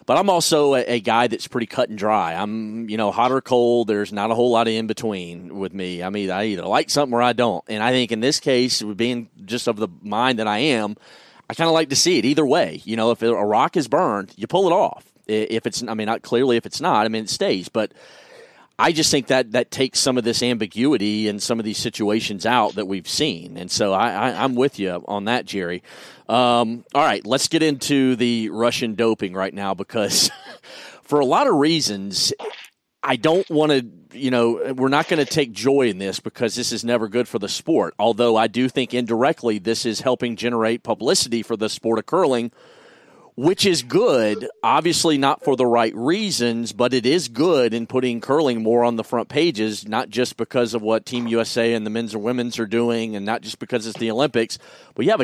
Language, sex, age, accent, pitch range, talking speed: English, male, 30-49, American, 110-130 Hz, 225 wpm